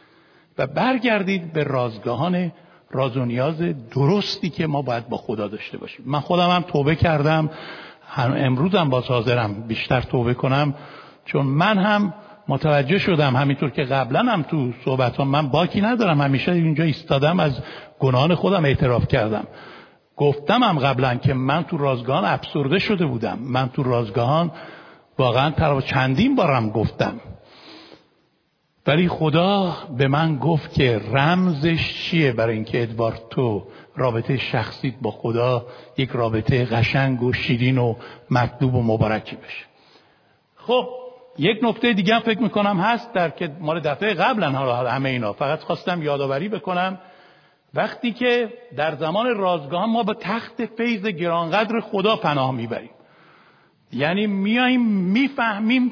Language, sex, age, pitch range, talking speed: Persian, male, 60-79, 130-195 Hz, 135 wpm